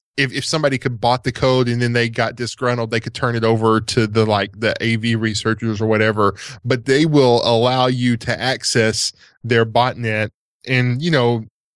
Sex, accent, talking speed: male, American, 190 wpm